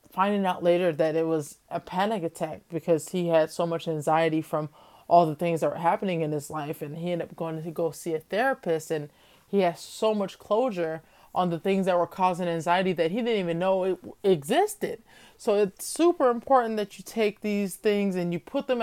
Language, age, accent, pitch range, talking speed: English, 20-39, American, 165-200 Hz, 215 wpm